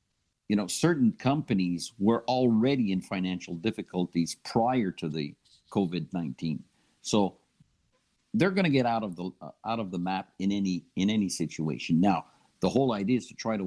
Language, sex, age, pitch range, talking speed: English, male, 50-69, 90-120 Hz, 175 wpm